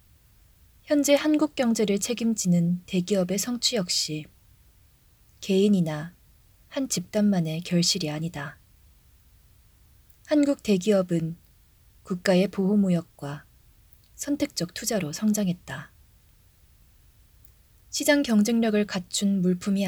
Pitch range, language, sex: 155-210 Hz, Korean, female